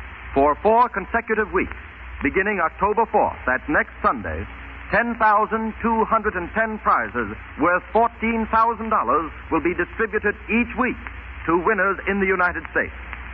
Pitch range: 140-215 Hz